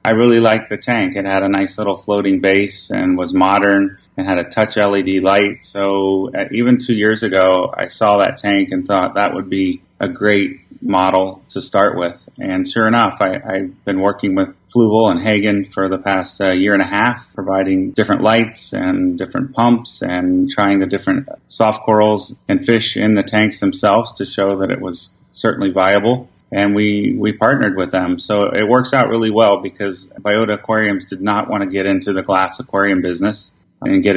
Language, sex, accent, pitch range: English, male, American, 95-110 Hz